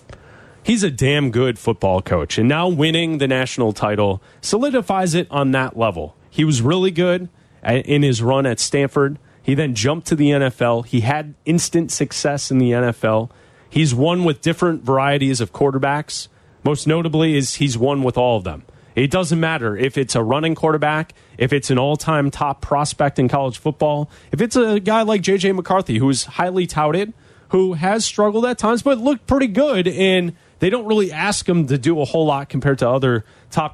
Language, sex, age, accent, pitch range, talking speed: English, male, 30-49, American, 130-175 Hz, 190 wpm